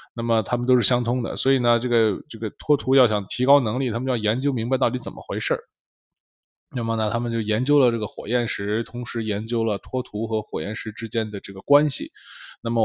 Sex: male